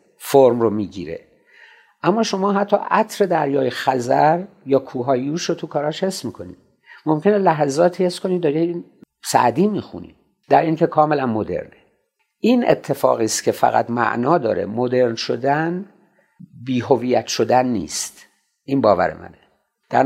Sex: male